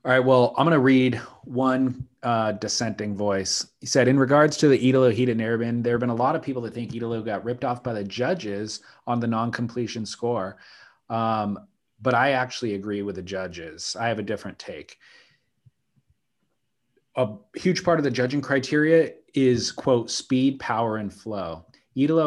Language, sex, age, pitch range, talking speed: English, male, 30-49, 110-130 Hz, 175 wpm